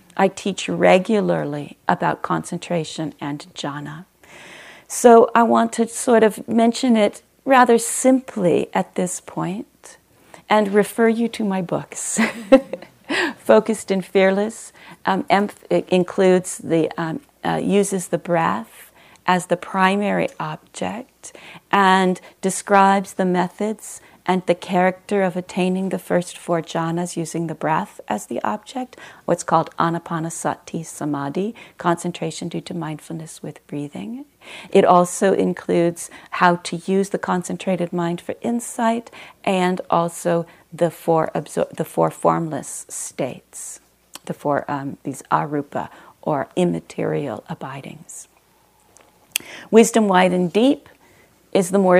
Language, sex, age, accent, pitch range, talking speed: English, female, 40-59, American, 170-210 Hz, 120 wpm